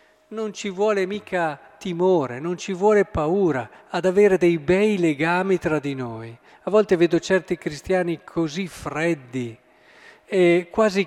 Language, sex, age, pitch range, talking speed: Italian, male, 50-69, 140-185 Hz, 140 wpm